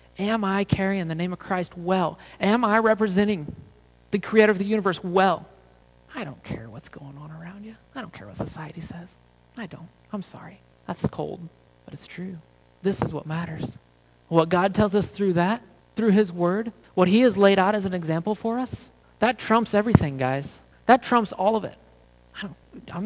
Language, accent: English, American